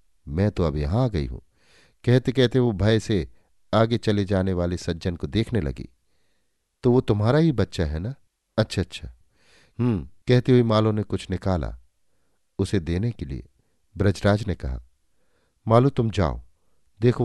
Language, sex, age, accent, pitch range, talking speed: Hindi, male, 50-69, native, 80-115 Hz, 165 wpm